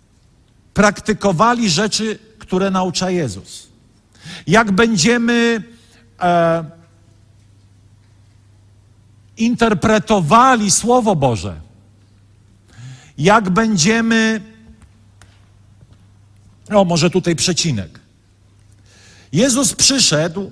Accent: native